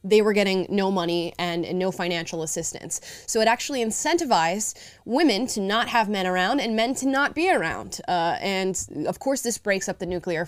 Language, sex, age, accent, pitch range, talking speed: English, female, 20-39, American, 185-235 Hz, 200 wpm